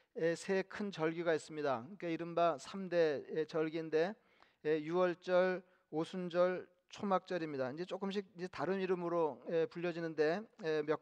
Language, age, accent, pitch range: Korean, 40-59, native, 165-185 Hz